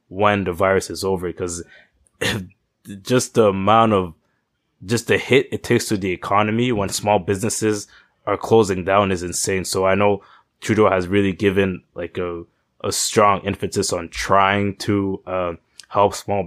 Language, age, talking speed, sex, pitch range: English, 20-39, 160 wpm, male, 90-105 Hz